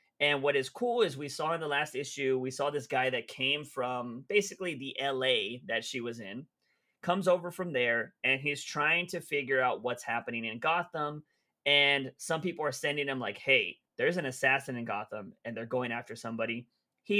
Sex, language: male, English